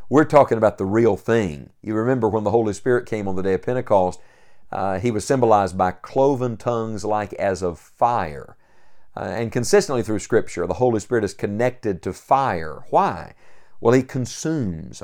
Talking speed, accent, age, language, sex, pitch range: 180 wpm, American, 50-69, English, male, 105-135 Hz